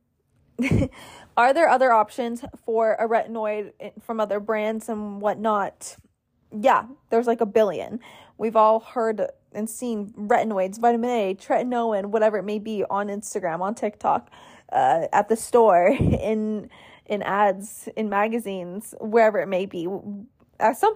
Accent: American